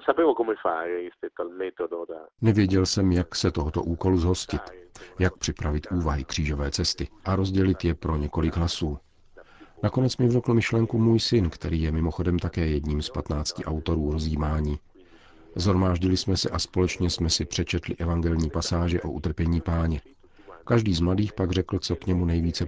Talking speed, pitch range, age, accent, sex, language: 145 wpm, 80-95 Hz, 50-69, native, male, Czech